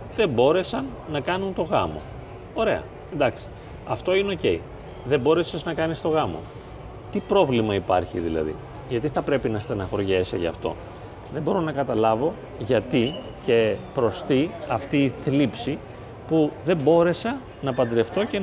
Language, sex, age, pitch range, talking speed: Greek, male, 30-49, 105-160 Hz, 145 wpm